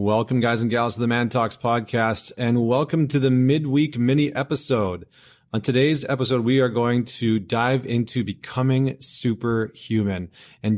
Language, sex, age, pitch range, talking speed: English, male, 30-49, 110-140 Hz, 155 wpm